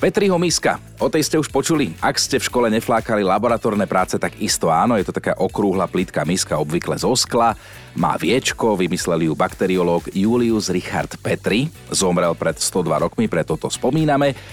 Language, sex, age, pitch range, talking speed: Slovak, male, 40-59, 95-130 Hz, 170 wpm